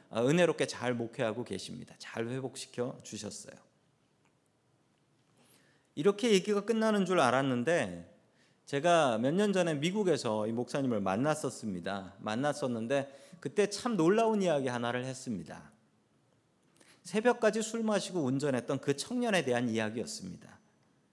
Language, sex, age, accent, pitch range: Korean, male, 40-59, native, 130-200 Hz